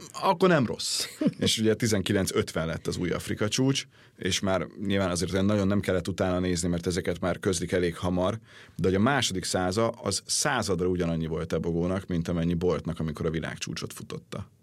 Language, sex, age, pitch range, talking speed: Hungarian, male, 30-49, 85-110 Hz, 175 wpm